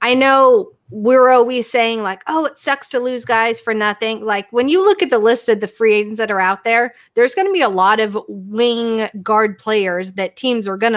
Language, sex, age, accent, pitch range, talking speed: English, female, 20-39, American, 200-250 Hz, 235 wpm